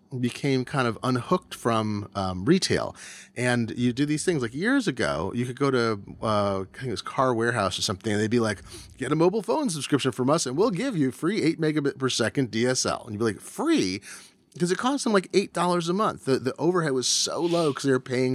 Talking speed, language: 235 wpm, English